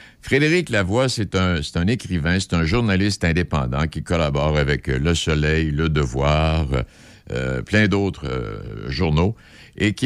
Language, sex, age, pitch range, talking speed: French, male, 60-79, 85-120 Hz, 135 wpm